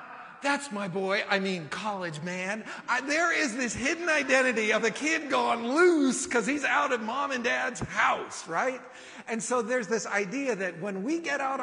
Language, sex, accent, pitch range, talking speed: English, male, American, 155-240 Hz, 190 wpm